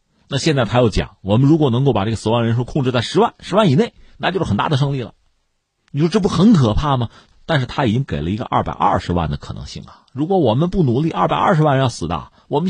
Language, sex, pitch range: Chinese, male, 90-140 Hz